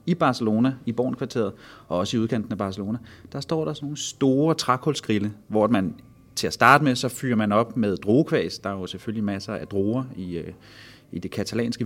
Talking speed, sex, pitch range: 200 wpm, male, 110-140 Hz